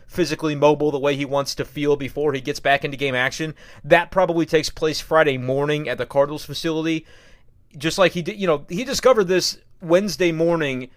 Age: 30-49